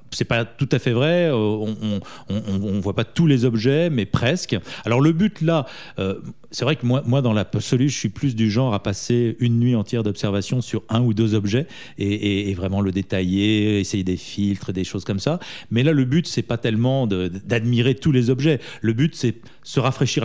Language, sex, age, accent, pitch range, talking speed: French, male, 40-59, French, 105-140 Hz, 225 wpm